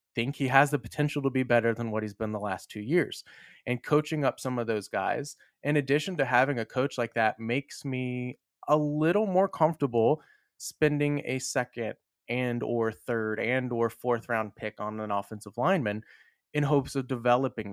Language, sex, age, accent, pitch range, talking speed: English, male, 30-49, American, 115-150 Hz, 190 wpm